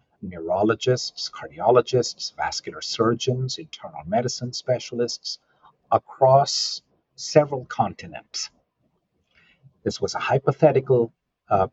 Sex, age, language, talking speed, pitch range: male, 50-69, English, 75 wpm, 105-130 Hz